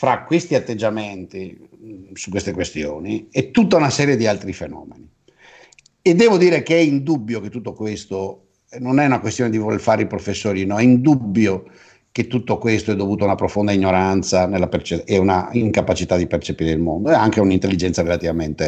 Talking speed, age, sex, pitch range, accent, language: 180 wpm, 60-79, male, 95-125 Hz, native, Italian